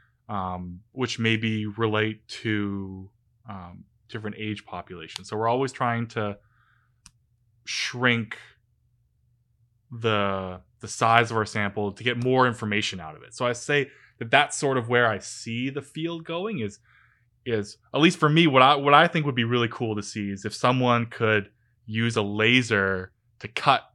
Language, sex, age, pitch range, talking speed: English, male, 20-39, 105-120 Hz, 170 wpm